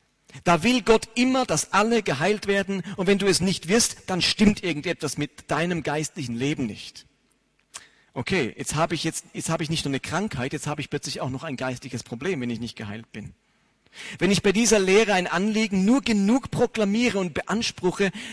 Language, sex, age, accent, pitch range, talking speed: German, male, 40-59, German, 135-195 Hz, 195 wpm